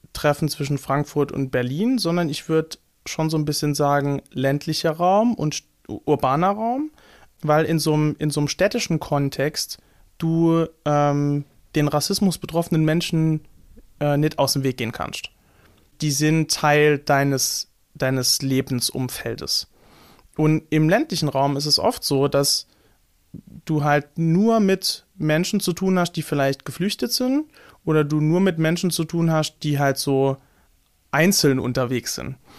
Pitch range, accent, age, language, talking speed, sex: 145-170 Hz, German, 30-49, German, 145 wpm, male